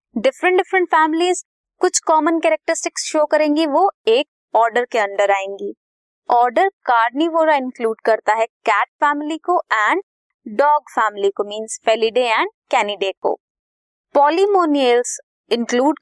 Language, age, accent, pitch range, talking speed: Hindi, 20-39, native, 220-320 Hz, 70 wpm